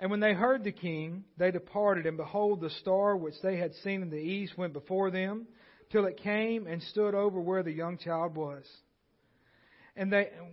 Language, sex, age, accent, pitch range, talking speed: English, male, 40-59, American, 165-195 Hz, 200 wpm